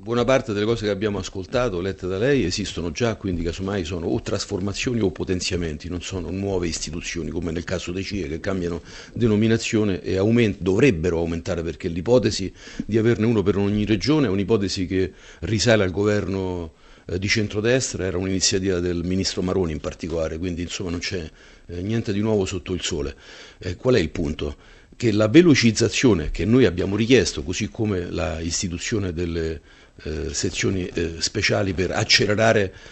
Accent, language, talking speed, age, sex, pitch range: native, Italian, 170 wpm, 50-69, male, 90-110 Hz